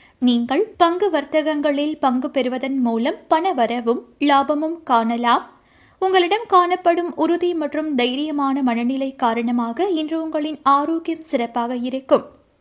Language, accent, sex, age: Tamil, native, female, 20-39